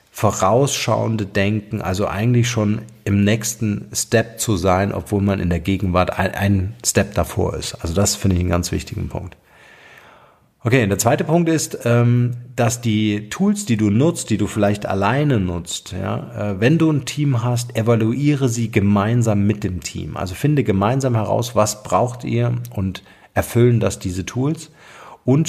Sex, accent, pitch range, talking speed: male, German, 95-115 Hz, 160 wpm